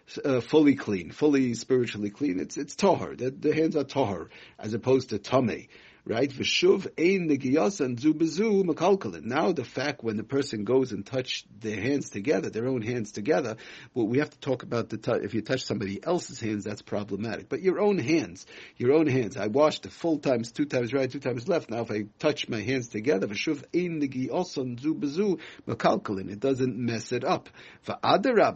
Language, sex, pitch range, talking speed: English, male, 115-145 Hz, 195 wpm